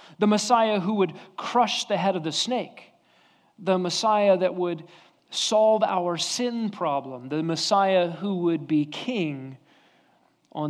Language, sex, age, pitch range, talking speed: English, male, 40-59, 170-215 Hz, 140 wpm